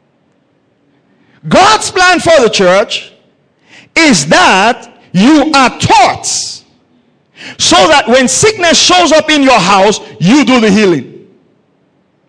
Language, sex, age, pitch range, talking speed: English, male, 50-69, 180-240 Hz, 110 wpm